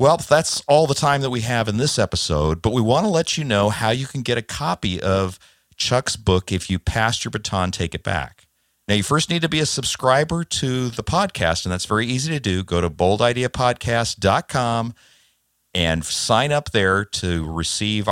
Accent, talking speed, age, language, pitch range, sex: American, 200 wpm, 50-69, English, 85-120 Hz, male